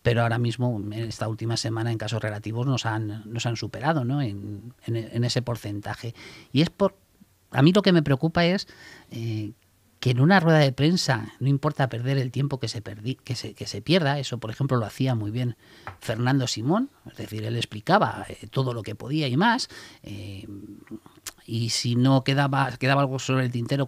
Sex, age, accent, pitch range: male, 40-59, Spanish, 115-140 Hz